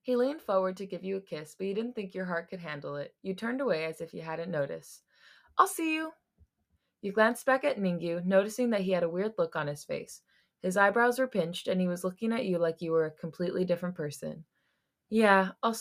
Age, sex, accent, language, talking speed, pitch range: 20-39, female, American, English, 235 wpm, 165-210 Hz